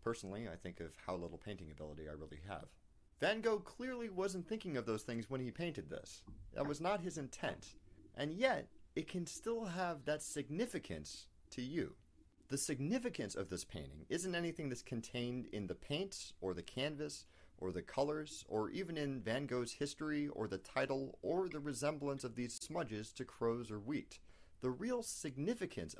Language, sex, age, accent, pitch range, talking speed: French, male, 40-59, American, 95-155 Hz, 180 wpm